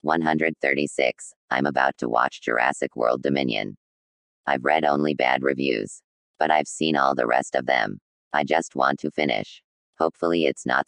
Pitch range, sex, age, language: 65-75 Hz, female, 20-39, English